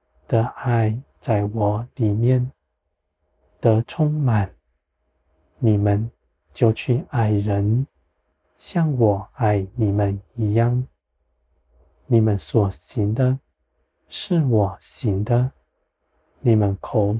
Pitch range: 80-125 Hz